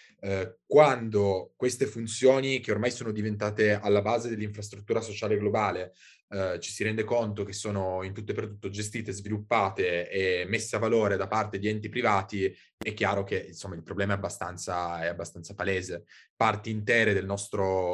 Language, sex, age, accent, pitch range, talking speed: Italian, male, 20-39, native, 100-115 Hz, 165 wpm